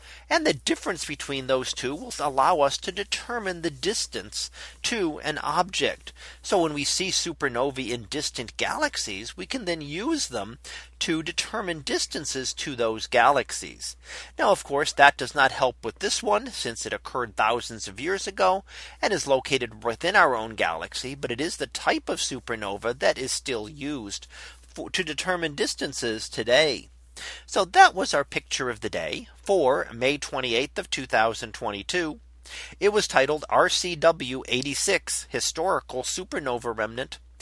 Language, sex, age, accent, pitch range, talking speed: English, male, 40-59, American, 115-180 Hz, 150 wpm